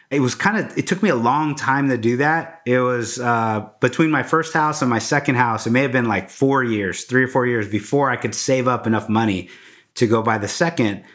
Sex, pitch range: male, 120-140 Hz